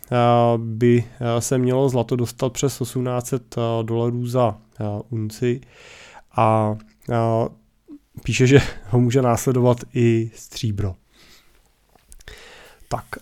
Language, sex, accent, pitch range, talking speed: Czech, male, native, 115-130 Hz, 90 wpm